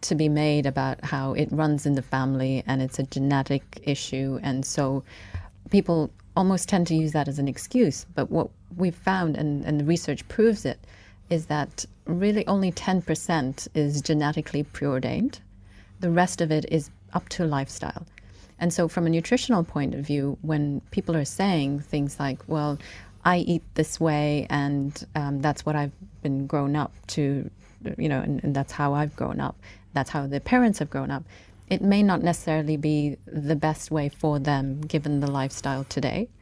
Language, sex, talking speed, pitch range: English, female, 180 wpm, 135-165 Hz